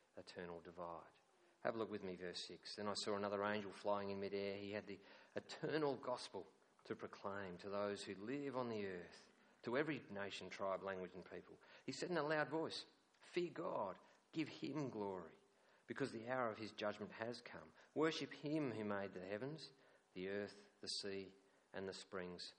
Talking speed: 185 wpm